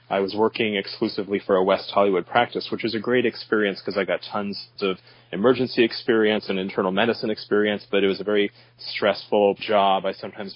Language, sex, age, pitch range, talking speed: English, male, 30-49, 95-110 Hz, 195 wpm